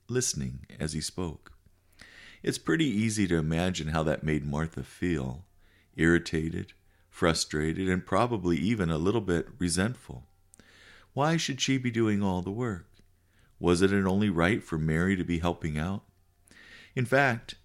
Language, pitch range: English, 85-110 Hz